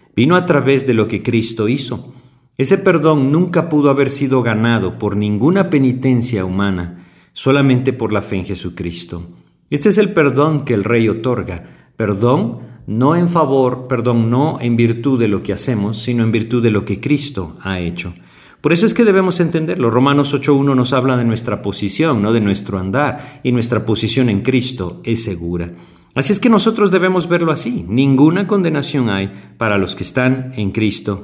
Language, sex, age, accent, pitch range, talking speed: Spanish, male, 50-69, Mexican, 105-140 Hz, 180 wpm